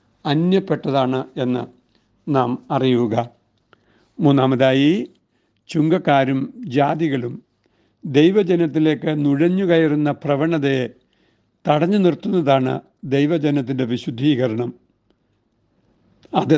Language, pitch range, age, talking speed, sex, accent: Malayalam, 130-155 Hz, 60-79, 55 wpm, male, native